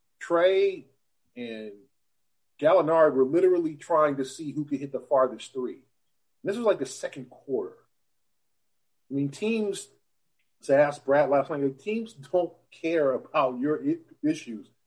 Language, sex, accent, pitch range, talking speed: English, male, American, 135-170 Hz, 140 wpm